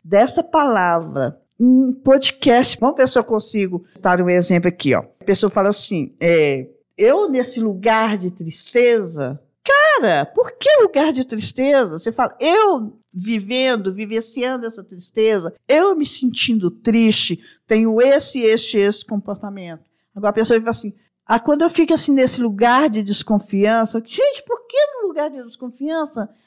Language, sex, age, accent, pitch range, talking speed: Portuguese, female, 50-69, Brazilian, 210-265 Hz, 150 wpm